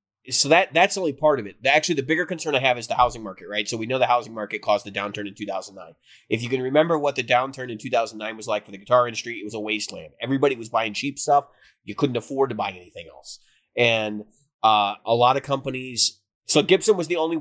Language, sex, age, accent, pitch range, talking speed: English, male, 30-49, American, 110-145 Hz, 250 wpm